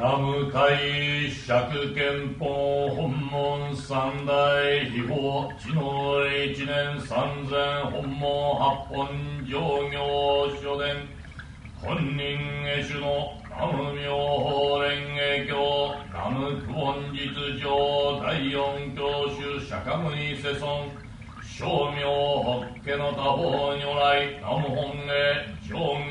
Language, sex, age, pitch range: Japanese, male, 60-79, 140-145 Hz